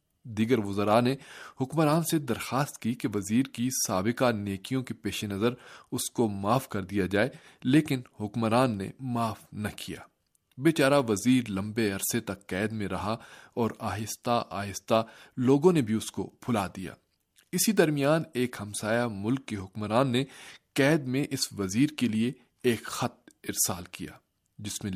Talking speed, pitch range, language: 155 wpm, 105-140 Hz, Urdu